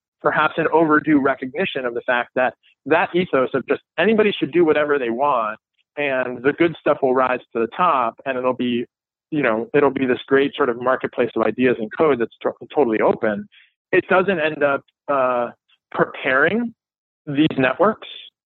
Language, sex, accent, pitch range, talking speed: English, male, American, 130-170 Hz, 180 wpm